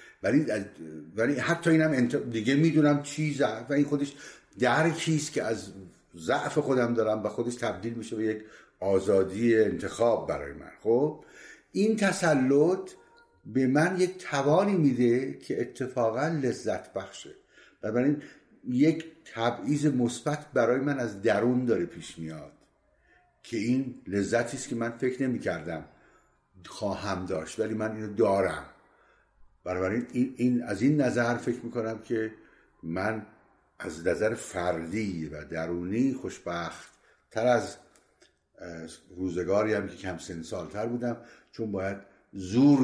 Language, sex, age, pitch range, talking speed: Persian, male, 60-79, 95-130 Hz, 130 wpm